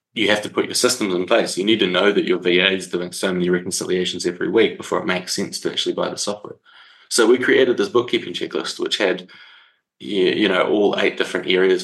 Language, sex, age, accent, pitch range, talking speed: English, male, 20-39, Australian, 90-115 Hz, 230 wpm